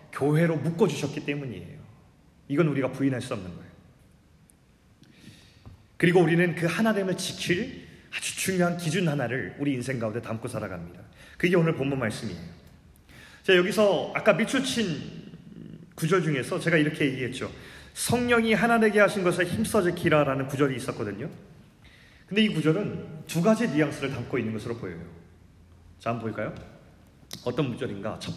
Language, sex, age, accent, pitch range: Korean, male, 30-49, native, 115-185 Hz